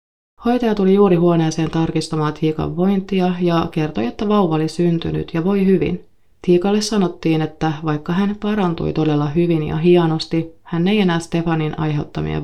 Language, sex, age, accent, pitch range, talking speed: Finnish, female, 30-49, native, 155-195 Hz, 150 wpm